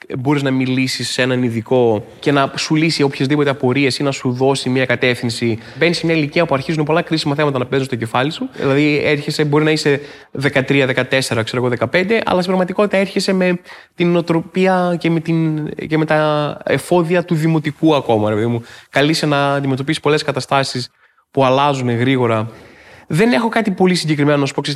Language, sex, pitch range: Greek, male, 125-160 Hz